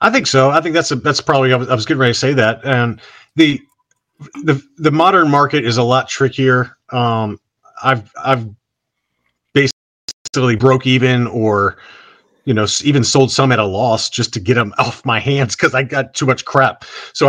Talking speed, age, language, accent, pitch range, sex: 200 wpm, 40-59, English, American, 115-135 Hz, male